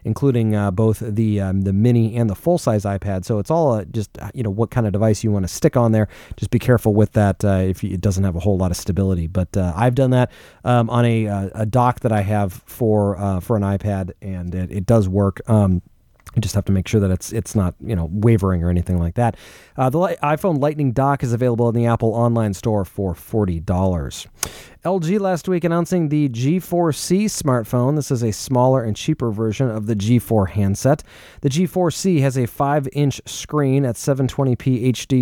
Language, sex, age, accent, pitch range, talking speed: English, male, 30-49, American, 105-135 Hz, 220 wpm